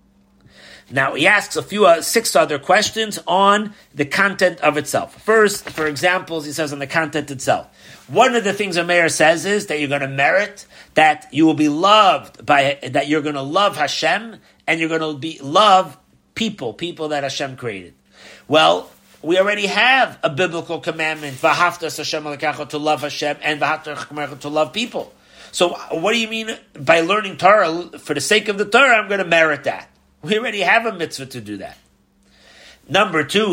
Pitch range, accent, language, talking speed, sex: 145-180 Hz, American, English, 185 wpm, male